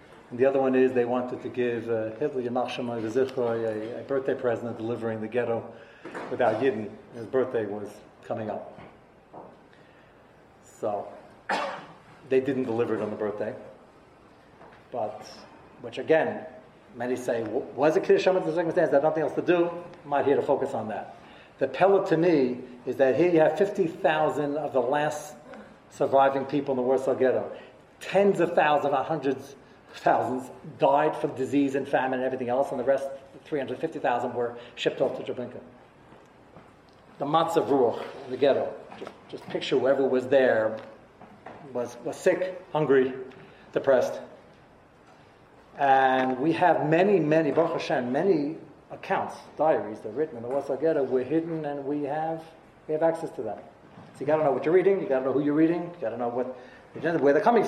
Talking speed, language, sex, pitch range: 165 wpm, English, male, 125-155 Hz